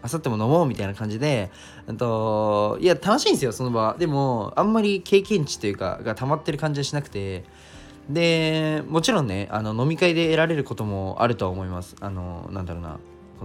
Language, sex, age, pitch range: Japanese, male, 20-39, 105-155 Hz